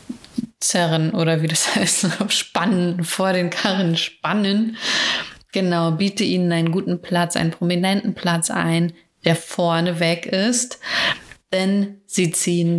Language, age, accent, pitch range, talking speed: German, 30-49, German, 165-200 Hz, 125 wpm